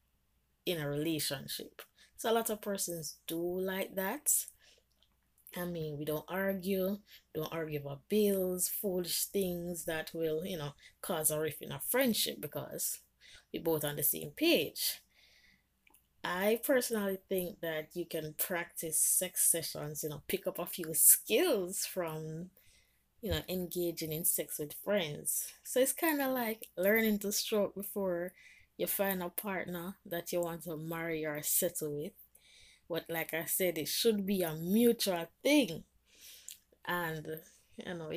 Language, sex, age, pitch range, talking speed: English, female, 20-39, 160-200 Hz, 155 wpm